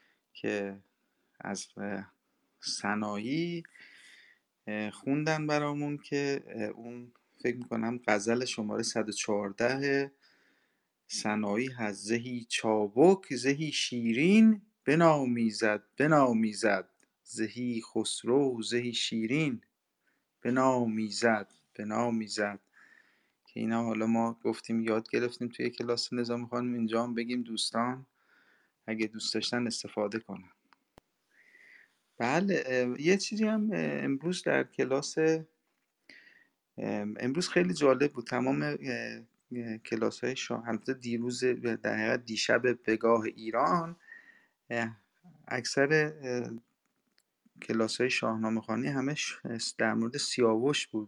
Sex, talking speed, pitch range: male, 95 wpm, 110-135 Hz